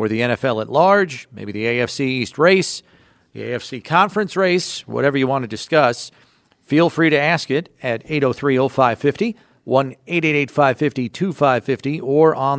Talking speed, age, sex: 145 wpm, 50-69, male